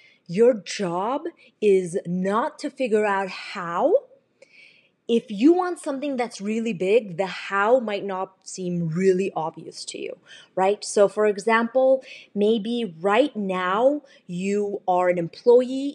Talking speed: 130 wpm